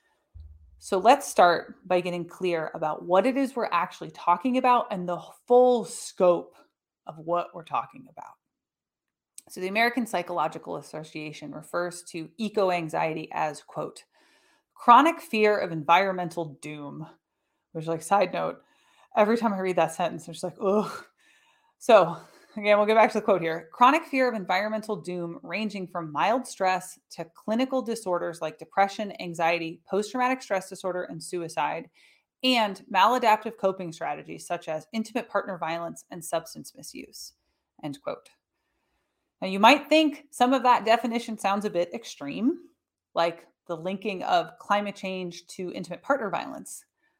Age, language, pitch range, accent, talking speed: 30-49, English, 170-235 Hz, American, 150 wpm